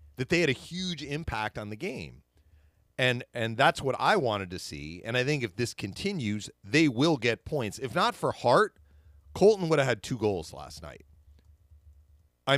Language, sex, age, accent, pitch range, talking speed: English, male, 40-59, American, 75-120 Hz, 185 wpm